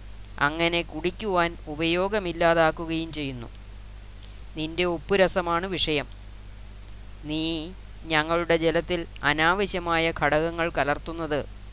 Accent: native